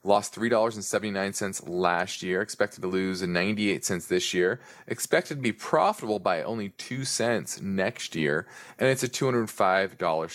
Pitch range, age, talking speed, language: 90-110 Hz, 20-39, 150 wpm, English